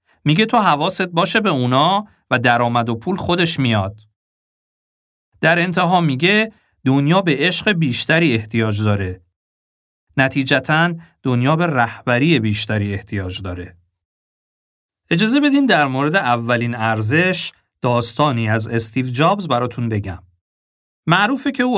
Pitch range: 110-170 Hz